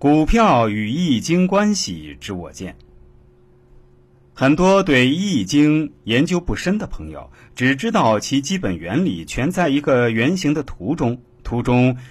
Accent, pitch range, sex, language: native, 100-155 Hz, male, Chinese